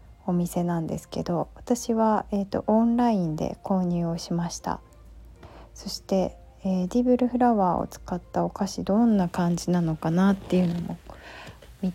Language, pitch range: Japanese, 170-220 Hz